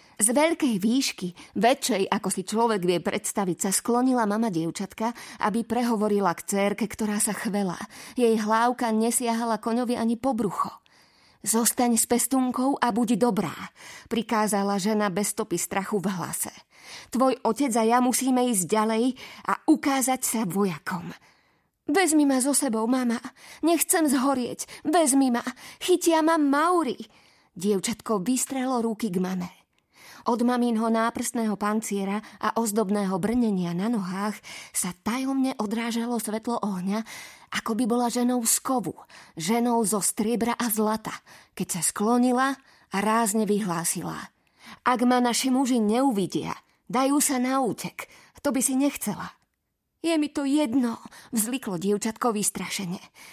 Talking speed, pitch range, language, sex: 135 wpm, 210-260 Hz, Slovak, female